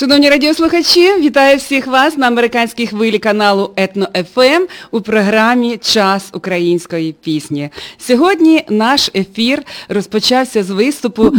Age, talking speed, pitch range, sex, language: 40-59, 110 wpm, 195-250 Hz, female, Russian